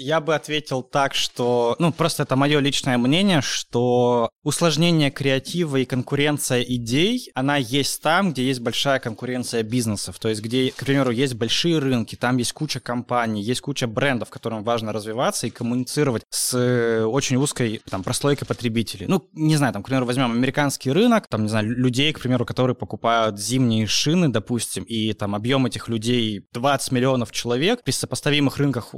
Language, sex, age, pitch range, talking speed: Russian, male, 20-39, 115-145 Hz, 170 wpm